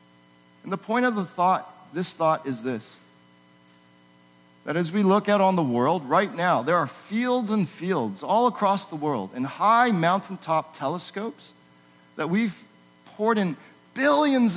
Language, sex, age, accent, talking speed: English, male, 40-59, American, 155 wpm